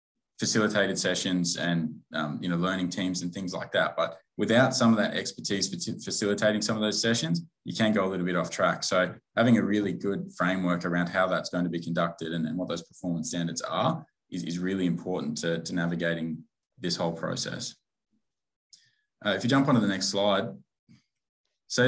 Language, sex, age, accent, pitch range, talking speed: English, male, 20-39, Australian, 90-115 Hz, 195 wpm